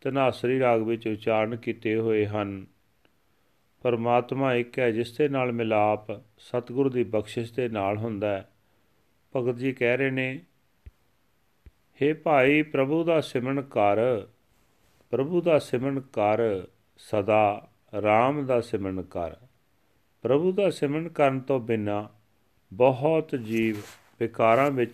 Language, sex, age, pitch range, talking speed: Punjabi, male, 40-59, 105-130 Hz, 115 wpm